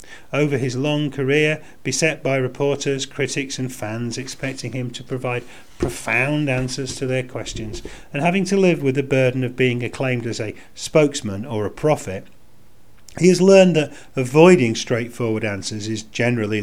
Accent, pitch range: British, 110-140 Hz